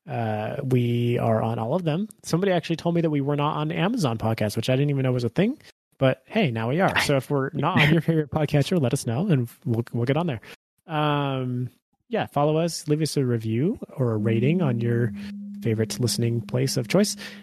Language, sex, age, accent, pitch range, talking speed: English, male, 30-49, American, 125-175 Hz, 225 wpm